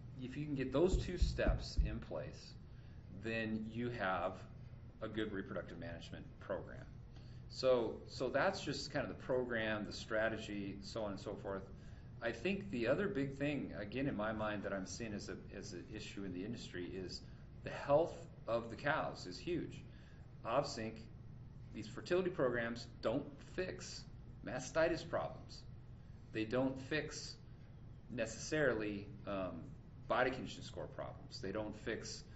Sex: male